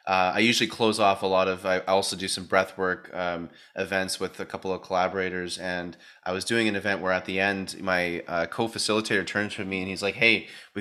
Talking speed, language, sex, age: 235 wpm, English, male, 20-39